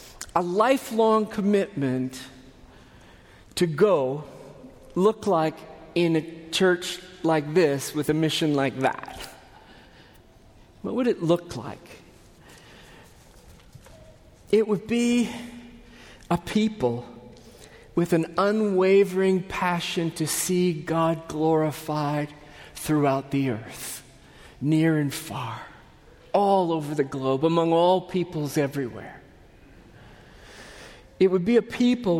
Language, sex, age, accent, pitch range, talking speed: English, male, 40-59, American, 155-215 Hz, 100 wpm